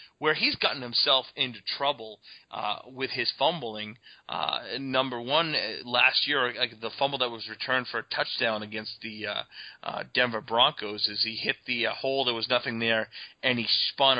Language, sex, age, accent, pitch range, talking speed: English, male, 30-49, American, 110-125 Hz, 180 wpm